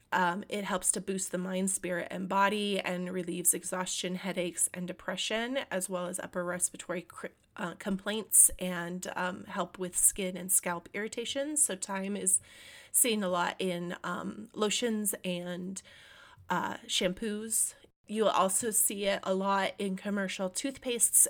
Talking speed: 150 wpm